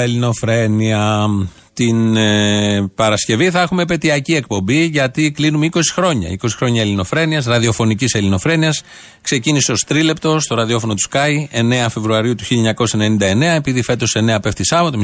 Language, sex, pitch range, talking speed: Greek, male, 115-165 Hz, 130 wpm